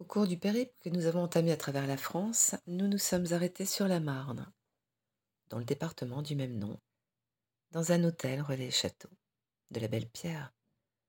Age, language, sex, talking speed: 40-59, French, female, 180 wpm